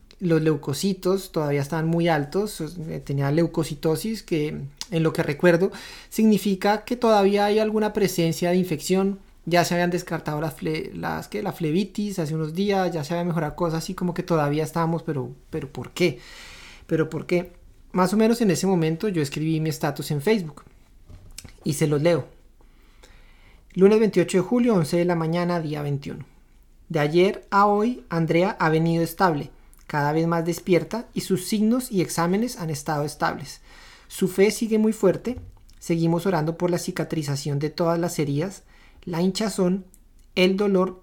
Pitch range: 155-190 Hz